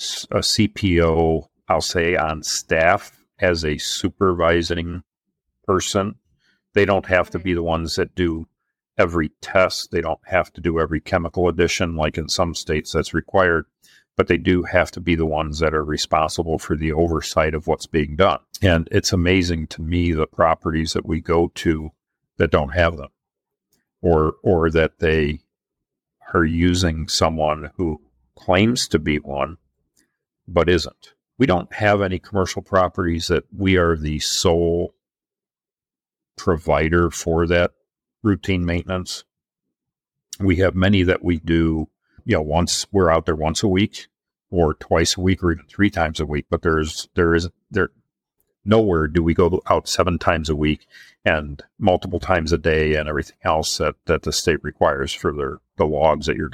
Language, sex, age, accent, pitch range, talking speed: English, male, 50-69, American, 80-90 Hz, 170 wpm